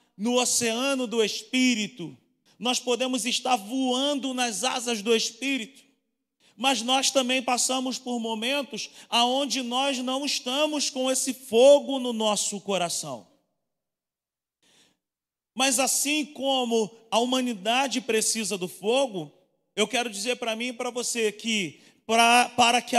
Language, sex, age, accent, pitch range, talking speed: Portuguese, male, 40-59, Brazilian, 210-250 Hz, 125 wpm